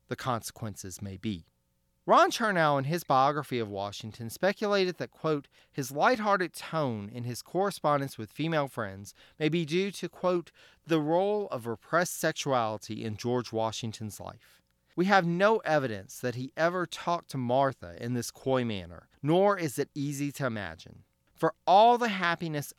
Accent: American